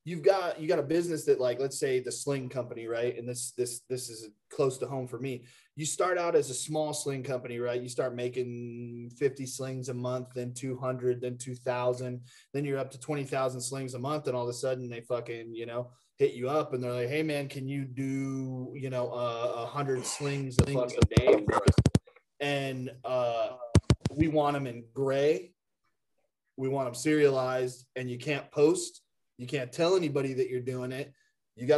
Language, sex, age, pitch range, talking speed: English, male, 20-39, 125-145 Hz, 200 wpm